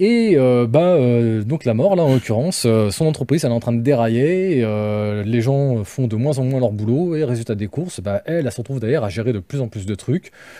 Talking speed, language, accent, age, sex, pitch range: 280 wpm, French, French, 20-39, male, 105-145 Hz